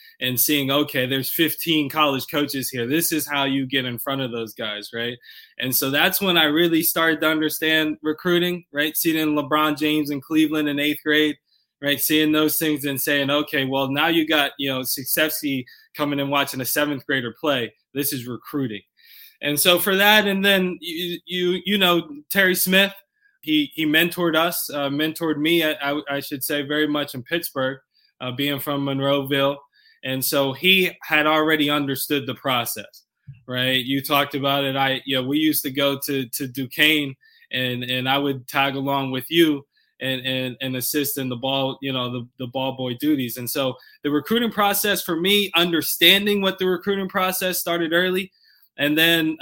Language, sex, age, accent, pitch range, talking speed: English, male, 20-39, American, 135-165 Hz, 190 wpm